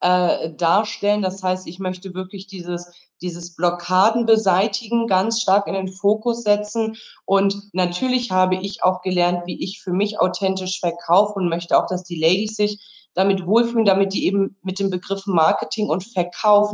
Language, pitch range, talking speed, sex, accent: German, 175-210 Hz, 170 wpm, female, German